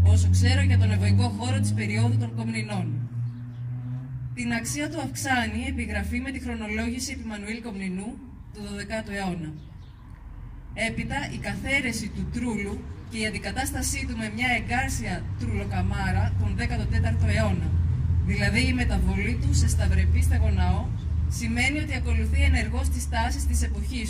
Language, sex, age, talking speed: Greek, female, 20-39, 130 wpm